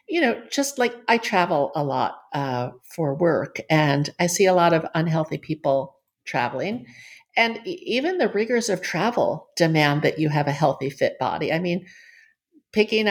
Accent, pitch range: American, 155-195 Hz